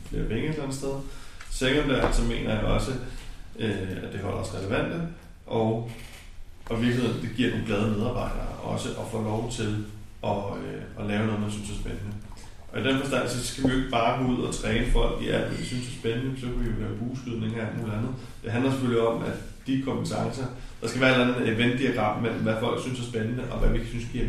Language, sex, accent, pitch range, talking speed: Danish, male, native, 105-130 Hz, 230 wpm